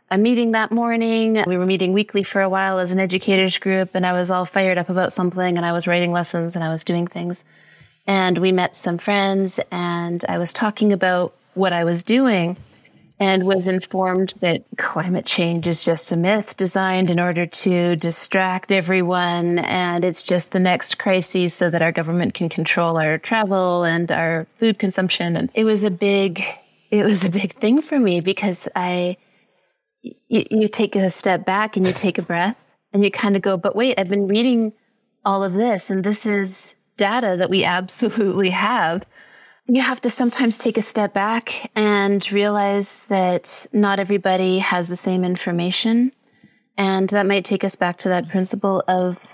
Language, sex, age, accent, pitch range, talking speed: English, female, 30-49, American, 180-205 Hz, 185 wpm